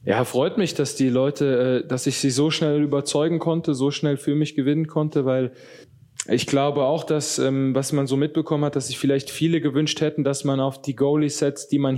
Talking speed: 215 wpm